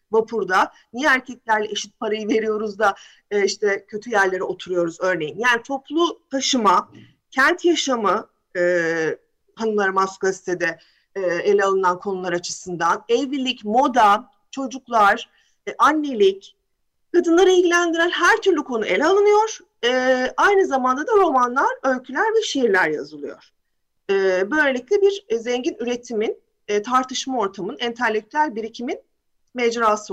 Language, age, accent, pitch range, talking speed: Turkish, 40-59, native, 210-330 Hz, 120 wpm